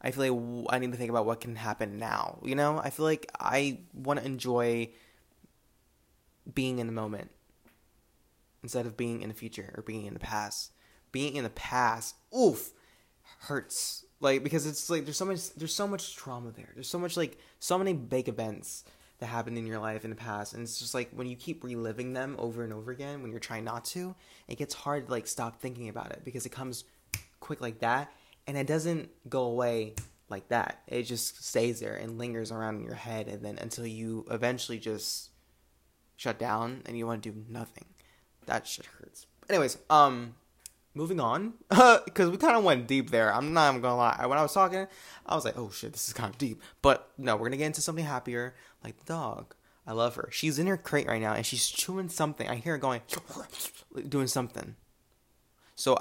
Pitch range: 115-140 Hz